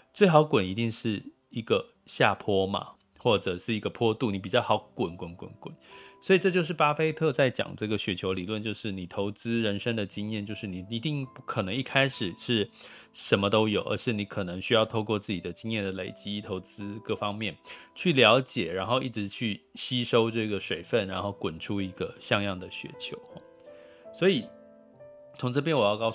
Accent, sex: native, male